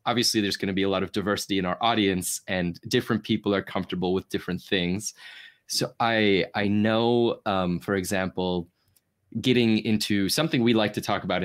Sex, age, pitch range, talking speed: male, 20-39, 95-115 Hz, 185 wpm